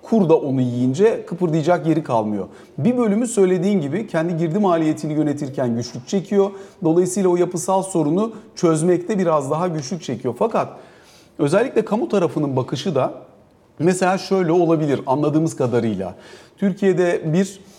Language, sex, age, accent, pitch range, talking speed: Turkish, male, 40-59, native, 140-180 Hz, 130 wpm